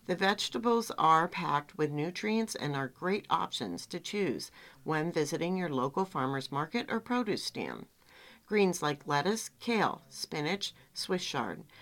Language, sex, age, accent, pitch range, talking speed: English, female, 50-69, American, 145-205 Hz, 140 wpm